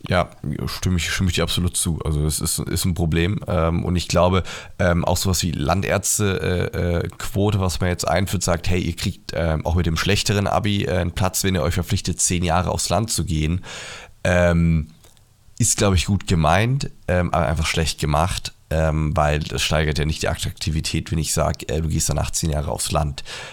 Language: German